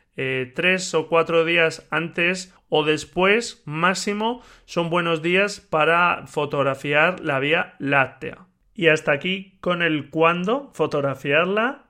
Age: 40-59